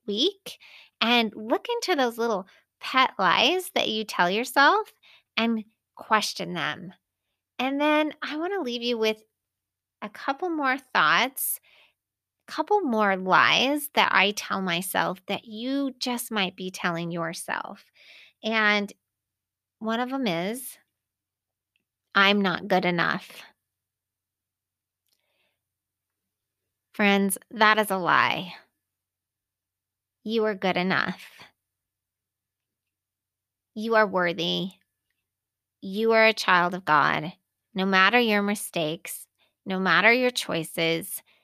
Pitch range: 165-230 Hz